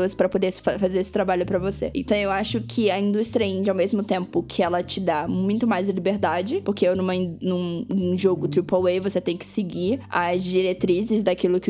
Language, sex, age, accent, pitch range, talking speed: Portuguese, female, 10-29, Brazilian, 185-220 Hz, 200 wpm